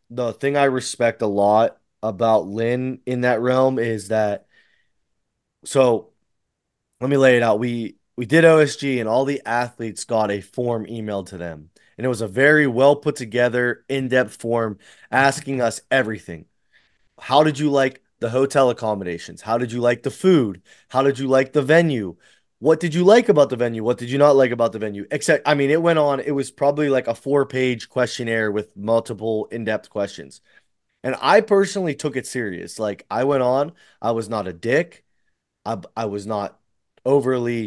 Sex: male